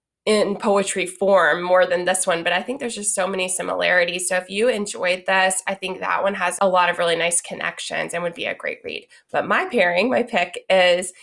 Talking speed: 230 wpm